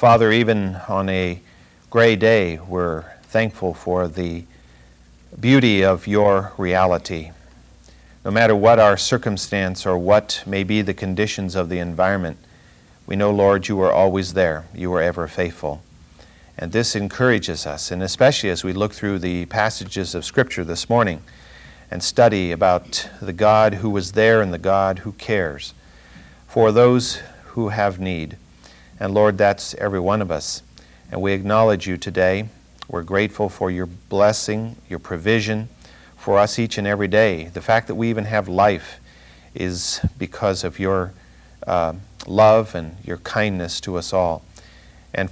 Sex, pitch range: male, 85-105 Hz